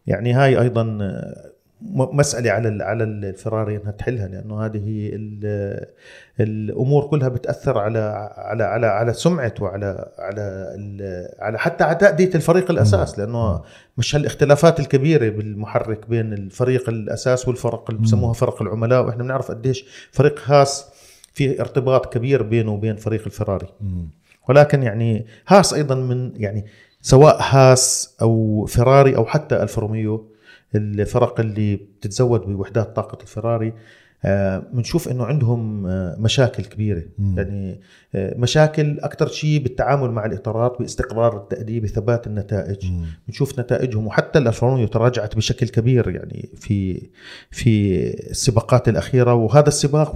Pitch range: 105-130 Hz